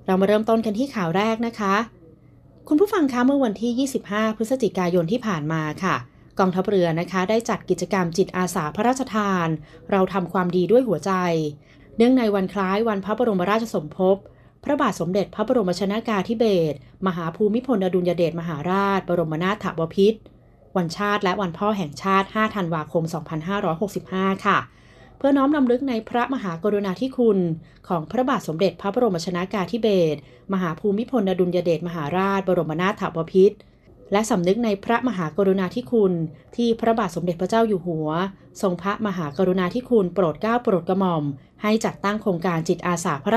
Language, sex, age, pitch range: Thai, female, 30-49, 175-215 Hz